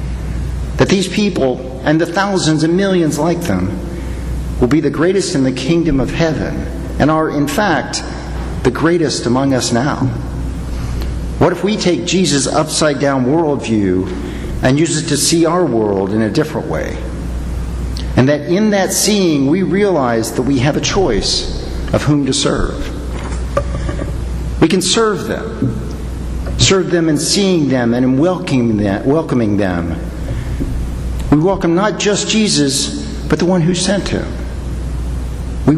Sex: male